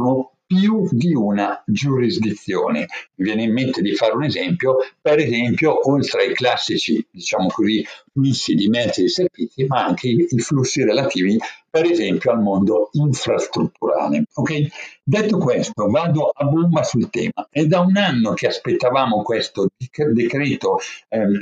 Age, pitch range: 60-79, 130-200 Hz